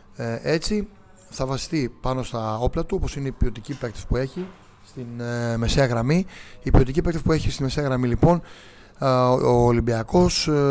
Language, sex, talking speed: Greek, male, 180 wpm